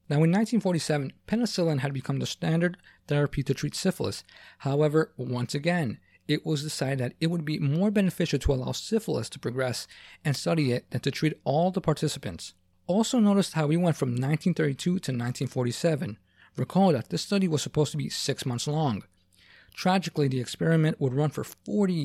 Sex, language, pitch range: male, English, 130-170 Hz